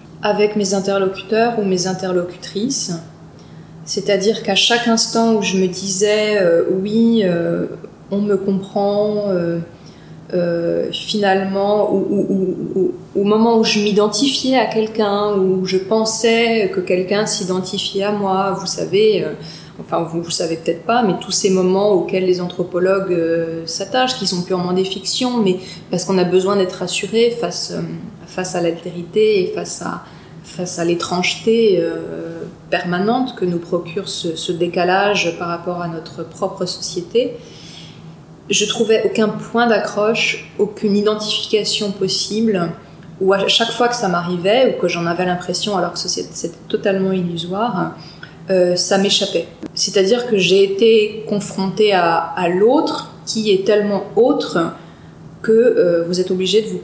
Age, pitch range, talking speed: 20-39, 175-210 Hz, 145 wpm